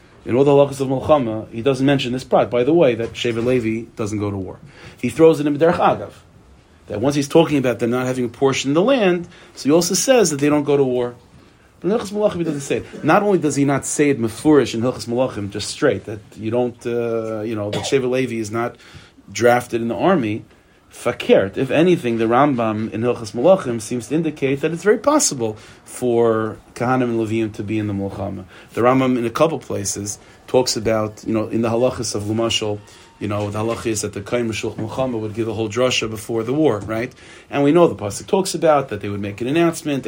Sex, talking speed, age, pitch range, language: male, 230 wpm, 30-49, 110-140 Hz, English